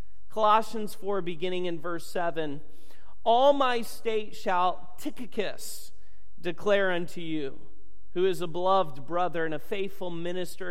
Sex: male